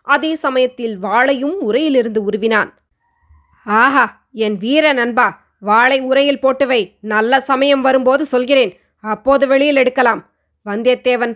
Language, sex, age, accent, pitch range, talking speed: Tamil, female, 20-39, native, 230-285 Hz, 105 wpm